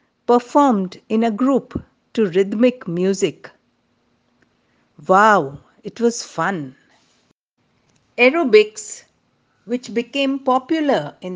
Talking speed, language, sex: 85 wpm, English, female